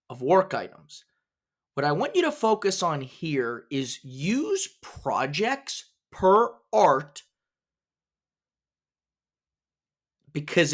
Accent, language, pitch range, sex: American, English, 140-200 Hz, male